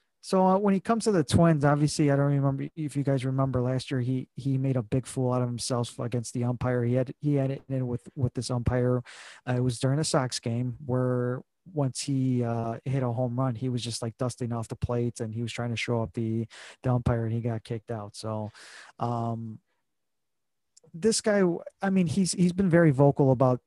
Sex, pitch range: male, 120-145 Hz